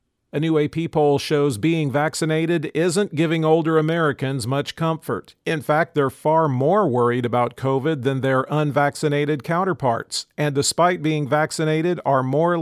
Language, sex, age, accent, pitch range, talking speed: English, male, 40-59, American, 130-160 Hz, 150 wpm